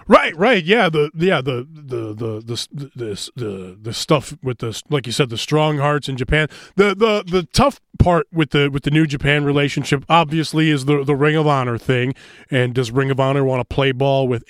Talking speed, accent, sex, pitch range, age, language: 220 wpm, American, male, 130-175 Hz, 20-39, English